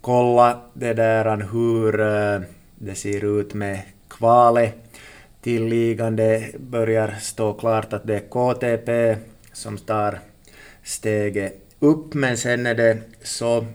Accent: Finnish